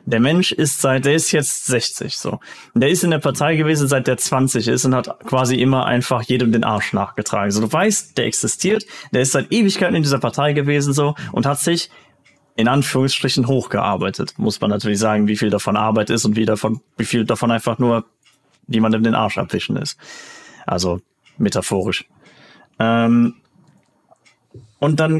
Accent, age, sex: German, 30-49, male